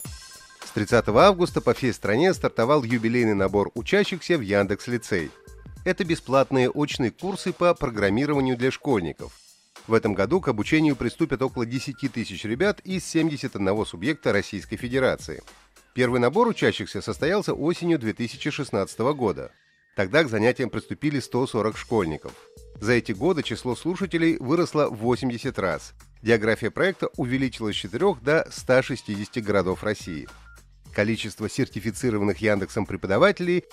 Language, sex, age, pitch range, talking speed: Russian, male, 30-49, 105-150 Hz, 125 wpm